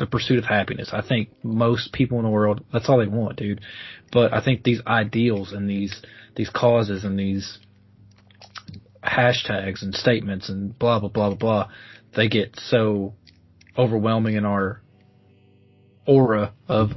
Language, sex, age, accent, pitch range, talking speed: English, male, 20-39, American, 100-120 Hz, 155 wpm